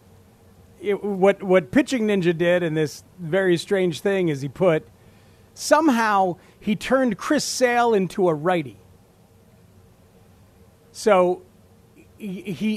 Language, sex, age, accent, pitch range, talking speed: English, male, 40-59, American, 115-190 Hz, 115 wpm